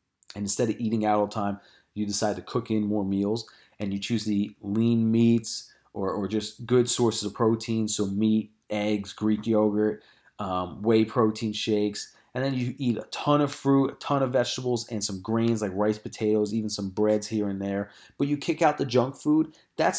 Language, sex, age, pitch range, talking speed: English, male, 30-49, 105-130 Hz, 205 wpm